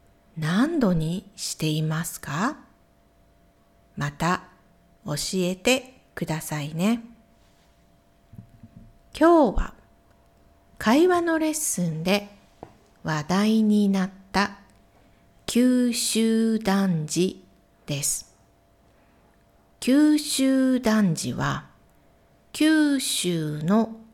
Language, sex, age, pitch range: Japanese, female, 50-69, 150-235 Hz